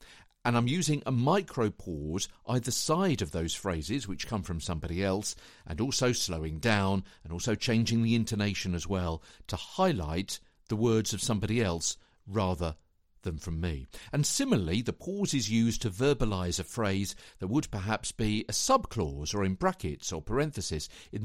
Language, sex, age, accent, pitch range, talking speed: English, male, 50-69, British, 90-125 Hz, 165 wpm